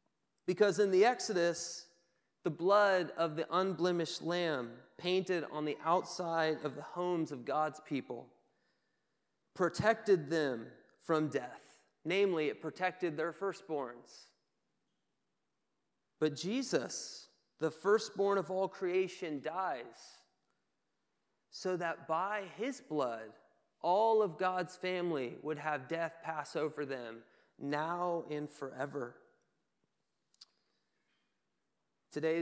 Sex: male